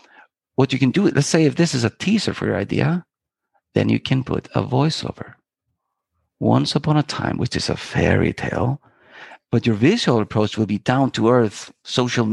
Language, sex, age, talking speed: English, male, 50-69, 190 wpm